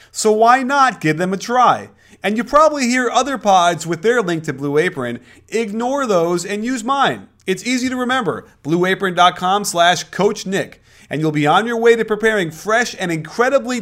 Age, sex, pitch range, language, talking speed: 30-49, male, 130-195 Hz, English, 180 wpm